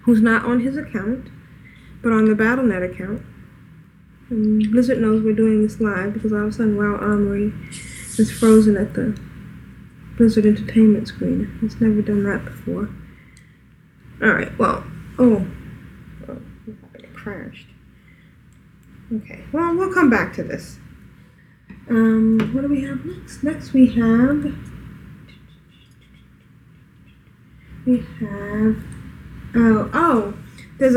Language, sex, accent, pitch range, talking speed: English, female, American, 215-245 Hz, 120 wpm